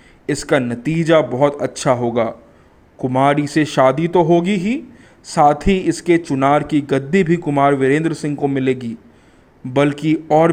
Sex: male